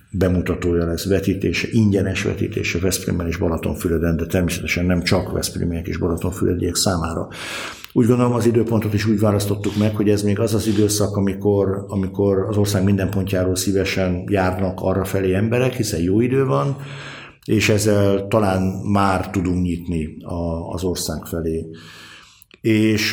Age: 50-69